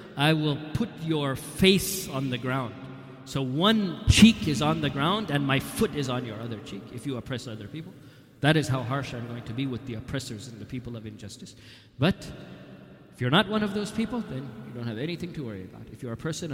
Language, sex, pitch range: English, male, 125-155 Hz